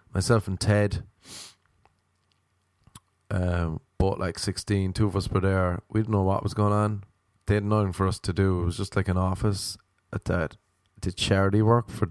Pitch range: 95-115 Hz